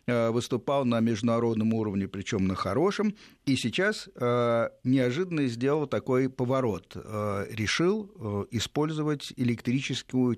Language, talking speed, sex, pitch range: Russian, 95 wpm, male, 110-145 Hz